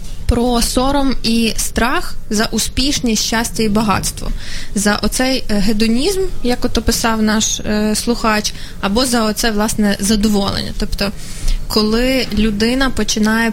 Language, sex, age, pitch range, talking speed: Ukrainian, female, 20-39, 205-235 Hz, 120 wpm